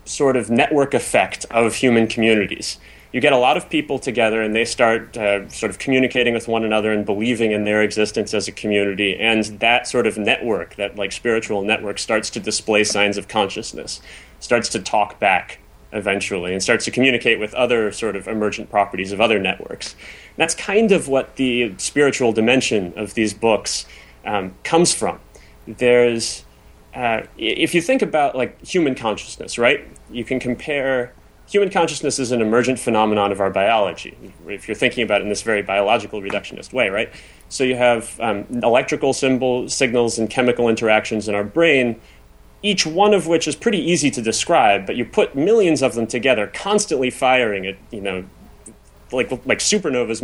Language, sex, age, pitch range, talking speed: English, male, 30-49, 105-130 Hz, 180 wpm